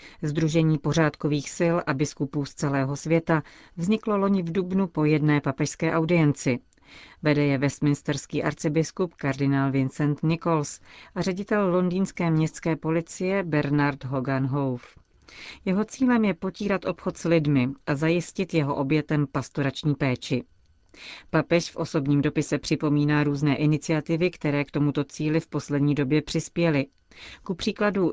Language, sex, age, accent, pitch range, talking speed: Czech, female, 40-59, native, 145-170 Hz, 130 wpm